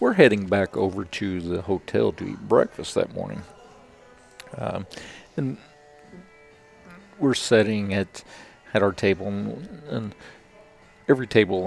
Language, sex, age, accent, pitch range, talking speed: English, male, 50-69, American, 90-105 Hz, 125 wpm